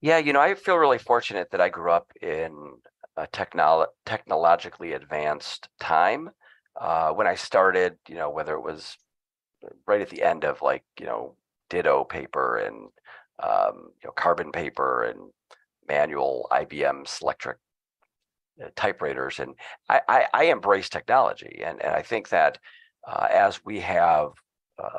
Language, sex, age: English, male, 40-59